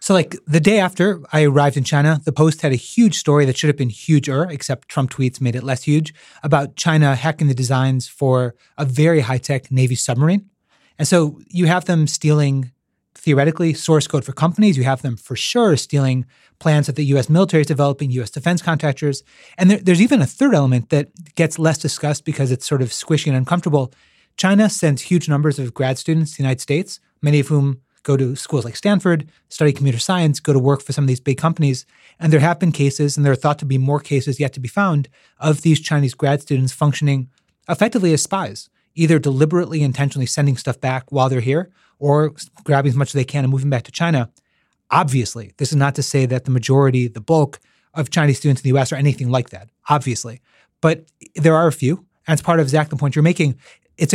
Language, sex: English, male